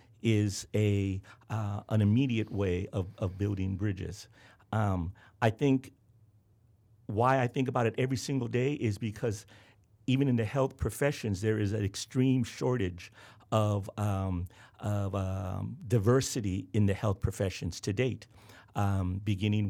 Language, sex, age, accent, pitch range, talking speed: English, male, 50-69, American, 100-120 Hz, 140 wpm